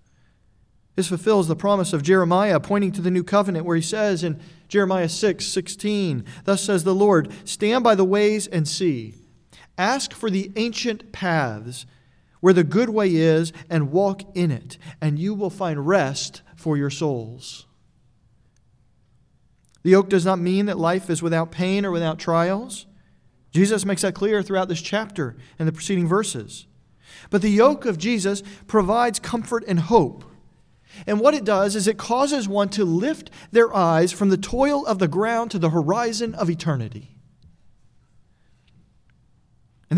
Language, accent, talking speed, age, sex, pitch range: English, American, 160 wpm, 40-59, male, 155-205 Hz